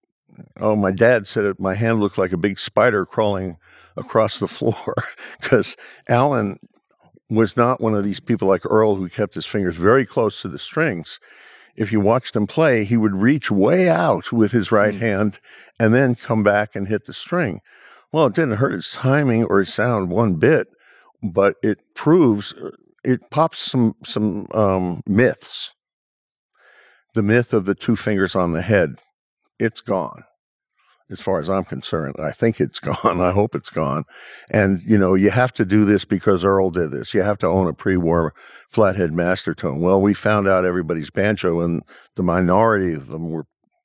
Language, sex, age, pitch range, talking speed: English, male, 50-69, 95-110 Hz, 185 wpm